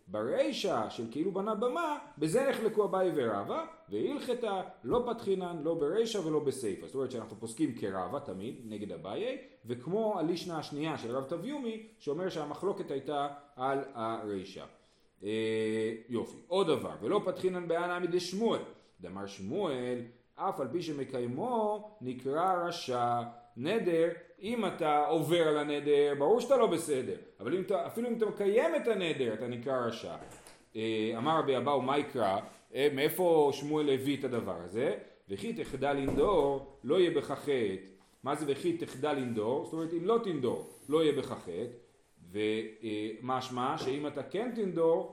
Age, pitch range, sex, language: 40-59, 130-215 Hz, male, Hebrew